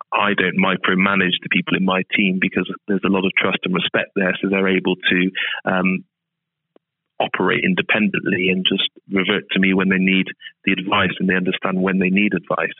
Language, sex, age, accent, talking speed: English, male, 30-49, British, 190 wpm